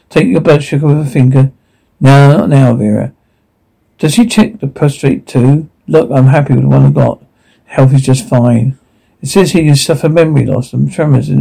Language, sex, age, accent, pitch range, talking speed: English, male, 60-79, British, 120-145 Hz, 205 wpm